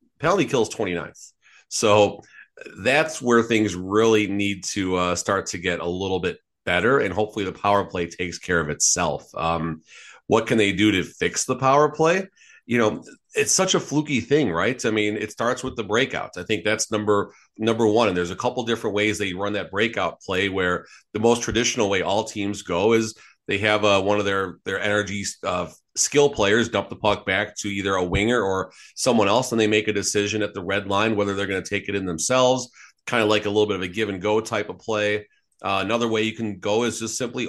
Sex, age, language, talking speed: male, 30-49, English, 225 wpm